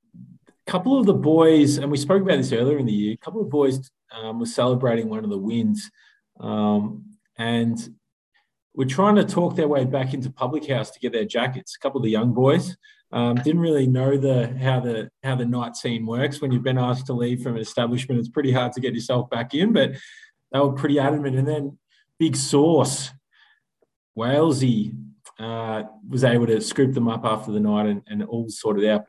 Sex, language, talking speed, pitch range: male, English, 210 wpm, 115-155 Hz